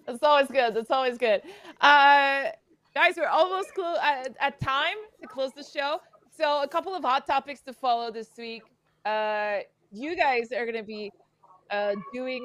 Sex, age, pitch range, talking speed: female, 20-39, 205-270 Hz, 175 wpm